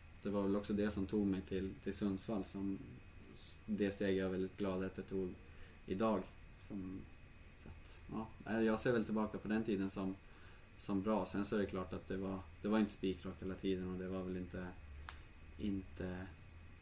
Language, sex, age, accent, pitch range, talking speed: Swedish, male, 20-39, Norwegian, 95-100 Hz, 200 wpm